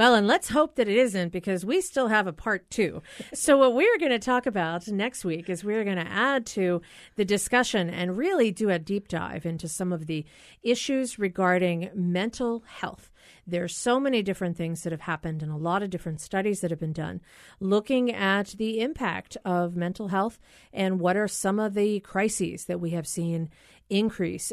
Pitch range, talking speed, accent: 175-225 Hz, 205 wpm, American